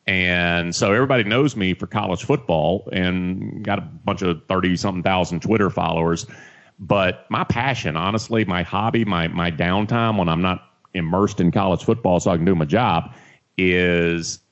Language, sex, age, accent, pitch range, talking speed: English, male, 30-49, American, 90-125 Hz, 170 wpm